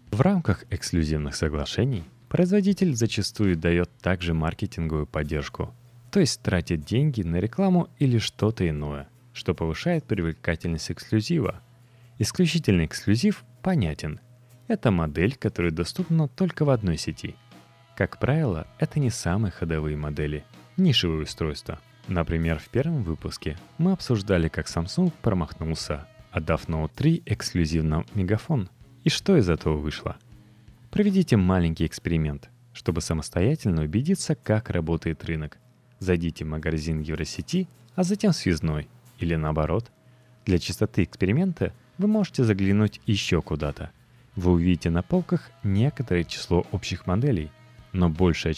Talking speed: 120 wpm